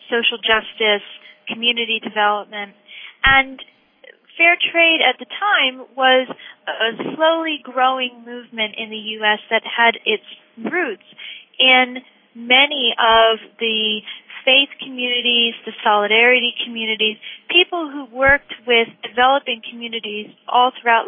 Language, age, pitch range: English, 40-59, 220-260 Hz